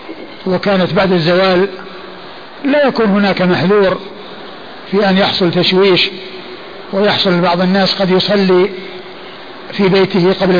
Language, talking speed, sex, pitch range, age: Arabic, 110 wpm, male, 185-205 Hz, 50-69